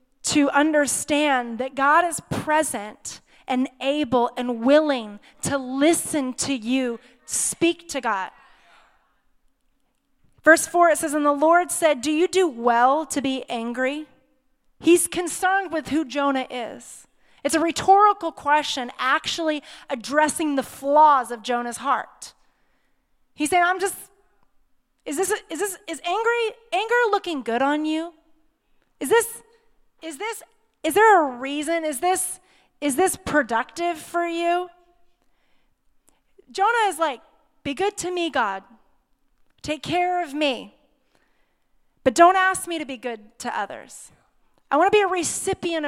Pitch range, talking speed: 265-345 Hz, 140 wpm